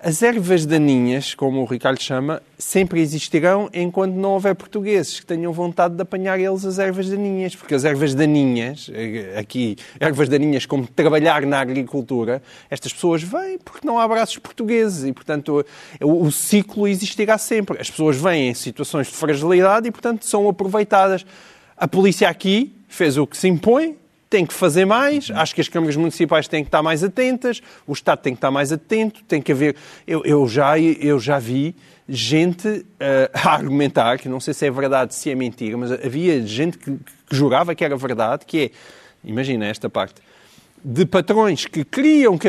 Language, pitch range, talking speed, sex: Portuguese, 145-210 Hz, 180 wpm, male